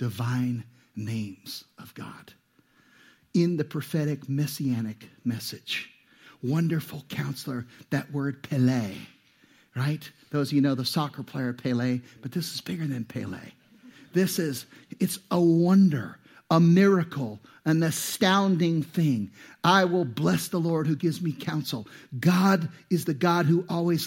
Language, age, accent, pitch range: English, 50-69, American, 140-195 Hz